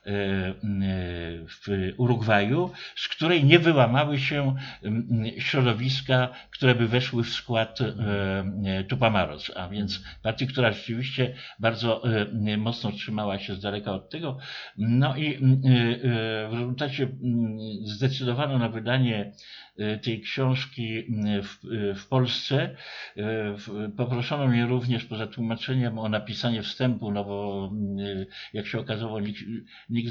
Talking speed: 110 wpm